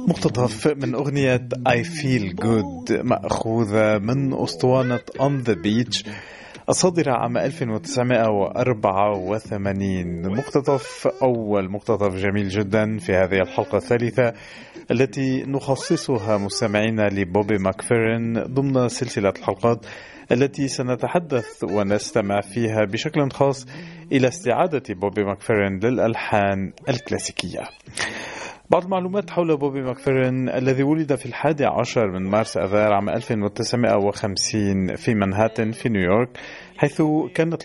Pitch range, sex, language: 100-135 Hz, male, Arabic